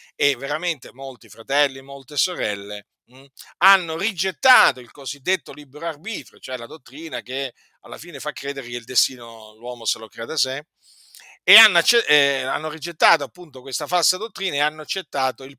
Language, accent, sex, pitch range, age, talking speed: Italian, native, male, 130-175 Hz, 50-69, 170 wpm